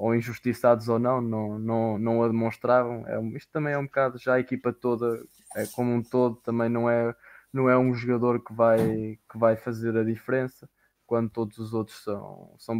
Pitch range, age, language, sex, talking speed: 115-140 Hz, 20-39, Portuguese, male, 195 wpm